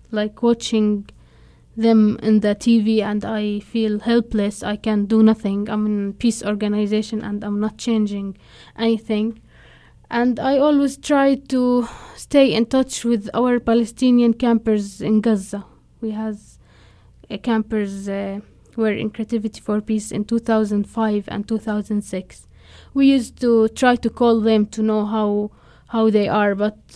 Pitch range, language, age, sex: 205-230 Hz, English, 20-39, female